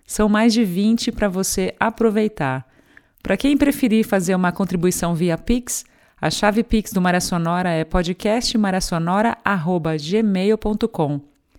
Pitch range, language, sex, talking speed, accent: 175-225 Hz, Portuguese, female, 120 wpm, Brazilian